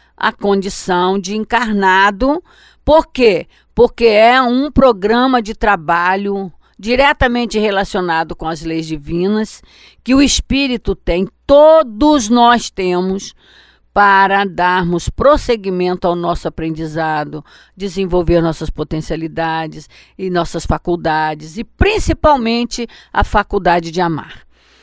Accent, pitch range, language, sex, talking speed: Brazilian, 180-235 Hz, Portuguese, female, 105 wpm